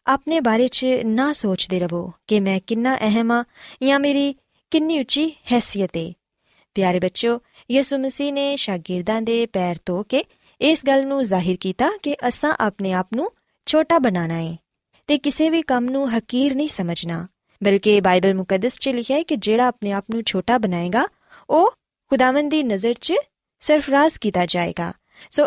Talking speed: 155 wpm